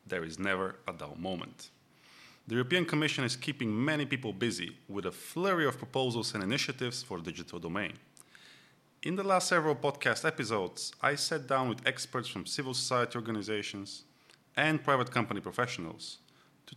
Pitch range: 105-135 Hz